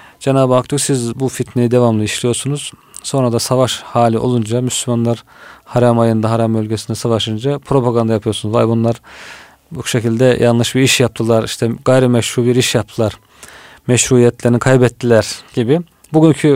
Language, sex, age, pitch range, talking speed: Turkish, male, 40-59, 115-125 Hz, 140 wpm